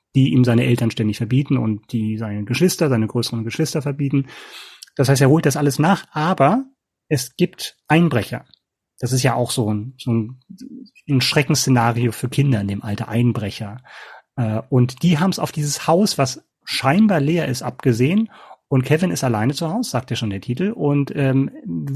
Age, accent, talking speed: 30-49, German, 180 wpm